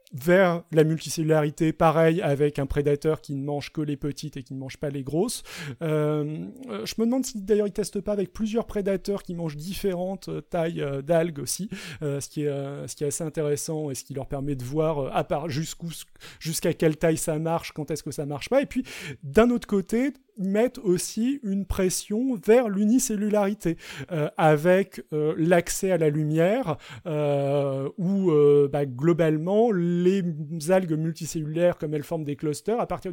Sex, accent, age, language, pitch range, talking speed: male, French, 30-49, French, 150-195 Hz, 180 wpm